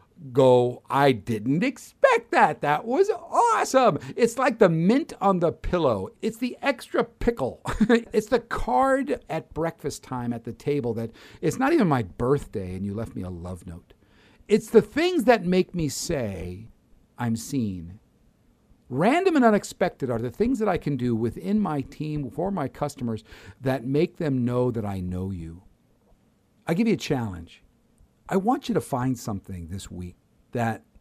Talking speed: 170 wpm